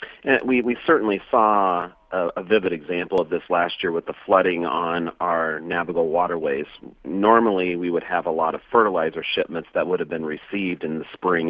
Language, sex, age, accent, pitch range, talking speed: English, male, 40-59, American, 85-110 Hz, 195 wpm